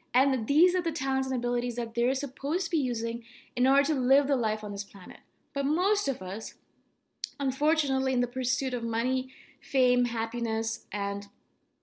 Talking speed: 180 wpm